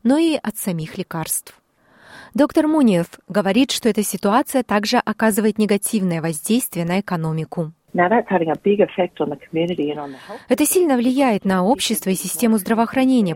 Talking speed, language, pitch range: 110 wpm, Russian, 180-230 Hz